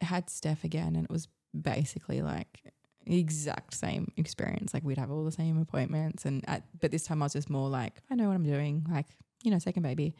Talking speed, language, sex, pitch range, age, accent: 230 wpm, English, female, 140-170 Hz, 20-39, Australian